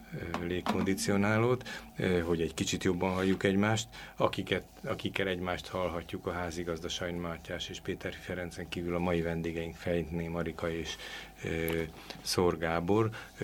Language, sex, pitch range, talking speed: Hungarian, male, 85-90 Hz, 110 wpm